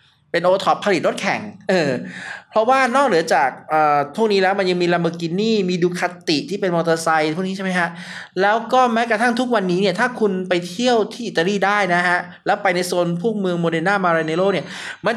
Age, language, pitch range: 20-39, Thai, 155-205 Hz